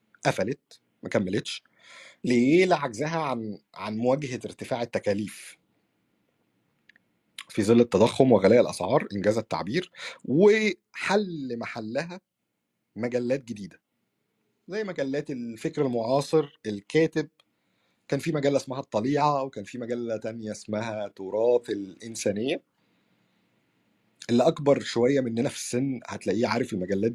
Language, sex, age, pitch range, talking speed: Arabic, male, 50-69, 115-165 Hz, 105 wpm